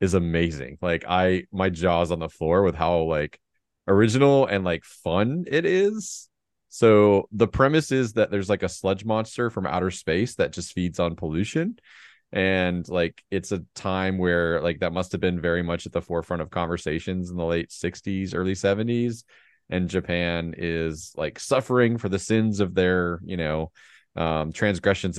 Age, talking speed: 20-39, 175 wpm